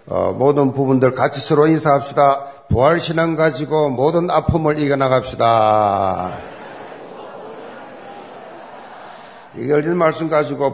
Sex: male